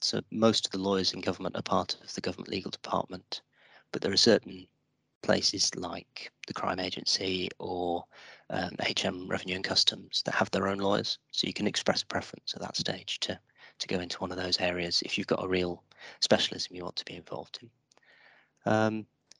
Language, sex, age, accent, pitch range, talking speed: English, male, 30-49, British, 90-100 Hz, 195 wpm